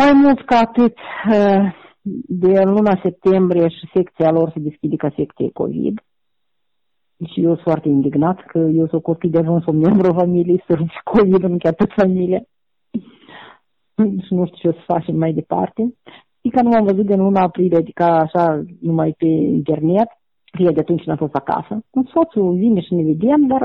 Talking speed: 180 wpm